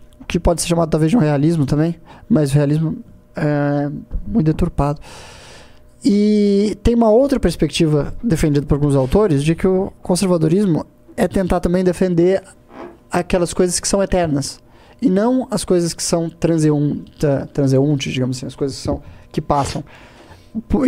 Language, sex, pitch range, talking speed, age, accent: Portuguese, male, 150-185 Hz, 150 wpm, 20-39, Brazilian